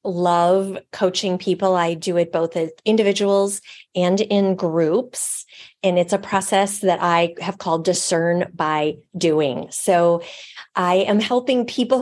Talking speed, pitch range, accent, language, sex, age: 140 wpm, 170-200 Hz, American, English, female, 30-49